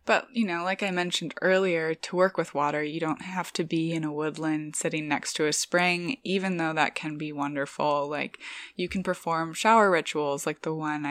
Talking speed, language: 210 wpm, English